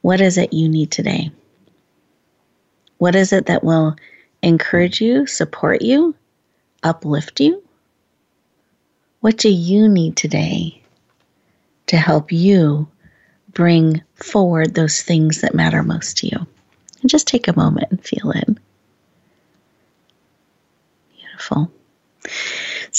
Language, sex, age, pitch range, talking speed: English, female, 40-59, 165-200 Hz, 115 wpm